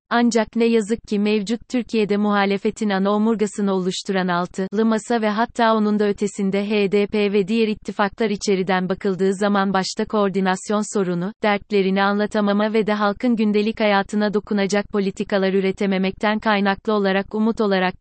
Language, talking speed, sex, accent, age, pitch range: Turkish, 135 wpm, female, native, 30-49, 195-220 Hz